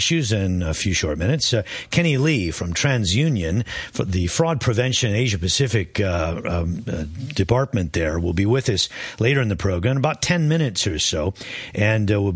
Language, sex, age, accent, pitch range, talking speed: English, male, 50-69, American, 95-130 Hz, 180 wpm